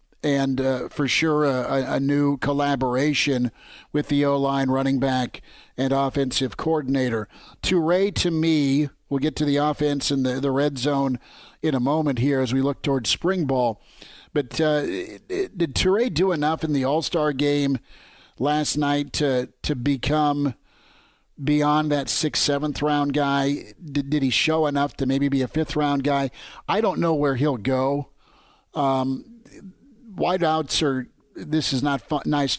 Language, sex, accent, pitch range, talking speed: English, male, American, 135-150 Hz, 155 wpm